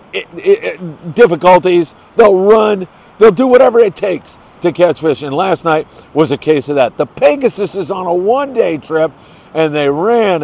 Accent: American